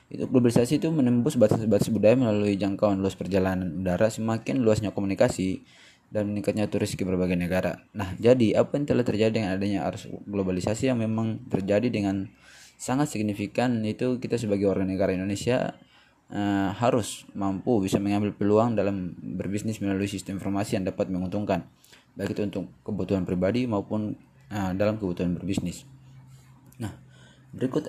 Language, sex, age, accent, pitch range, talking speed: Indonesian, male, 20-39, native, 100-125 Hz, 145 wpm